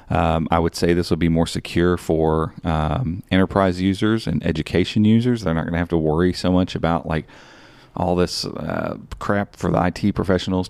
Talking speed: 195 wpm